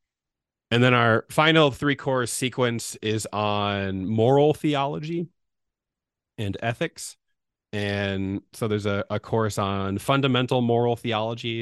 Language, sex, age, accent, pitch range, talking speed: English, male, 30-49, American, 95-115 Hz, 120 wpm